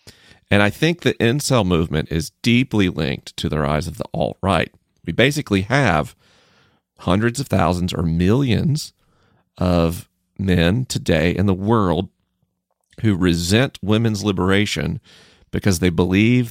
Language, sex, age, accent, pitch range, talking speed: English, male, 40-59, American, 90-115 Hz, 130 wpm